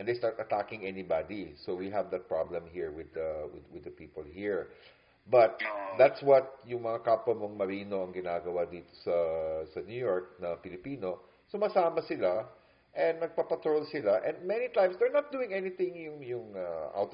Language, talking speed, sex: English, 180 wpm, male